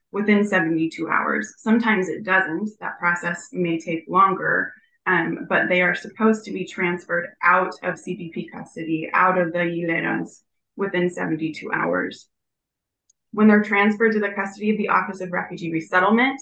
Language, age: English, 20-39